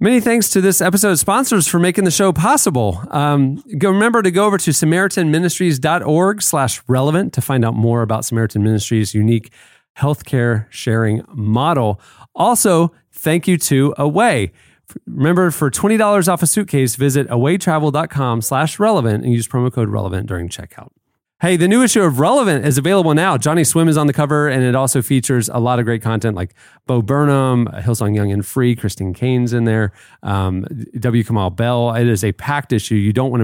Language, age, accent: English, 30-49, American